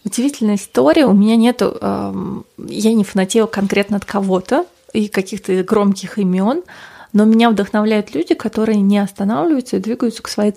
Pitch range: 195-225 Hz